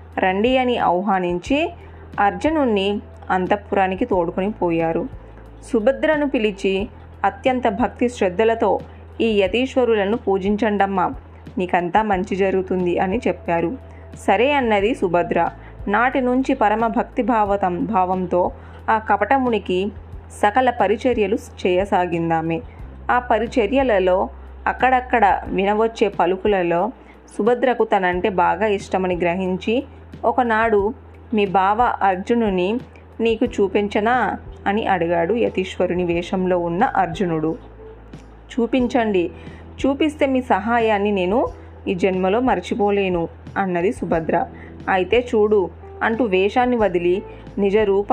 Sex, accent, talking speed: female, native, 90 wpm